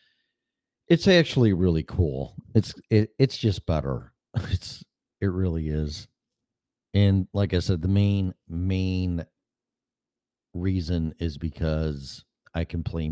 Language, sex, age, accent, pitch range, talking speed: English, male, 40-59, American, 80-100 Hz, 120 wpm